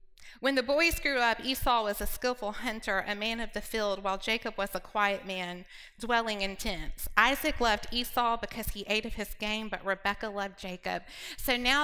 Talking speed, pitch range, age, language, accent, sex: 200 wpm, 195-240 Hz, 20-39, English, American, female